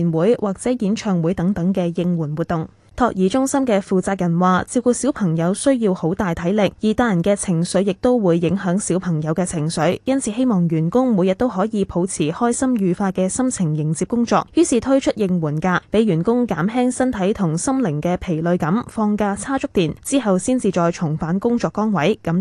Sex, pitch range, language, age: female, 175-230 Hz, Chinese, 10-29